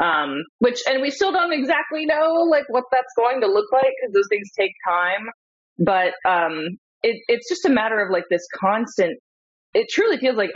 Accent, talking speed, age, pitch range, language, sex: American, 195 wpm, 20-39, 160-235 Hz, English, female